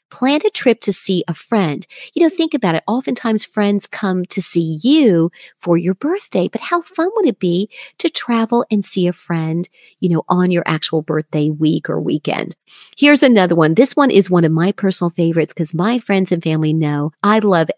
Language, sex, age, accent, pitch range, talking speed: English, female, 50-69, American, 170-230 Hz, 205 wpm